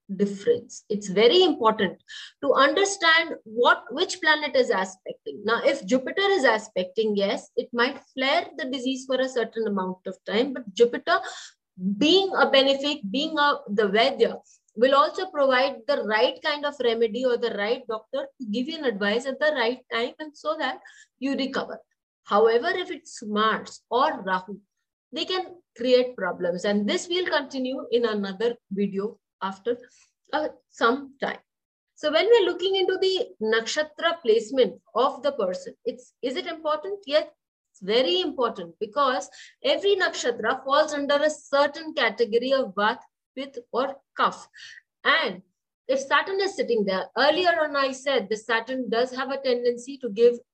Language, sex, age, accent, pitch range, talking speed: English, female, 20-39, Indian, 230-310 Hz, 160 wpm